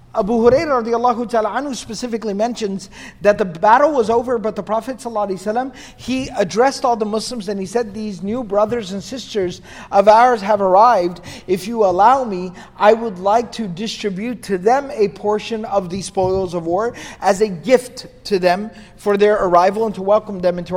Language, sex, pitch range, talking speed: English, male, 190-230 Hz, 185 wpm